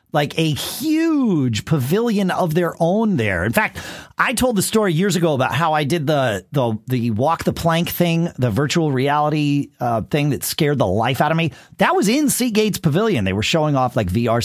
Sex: male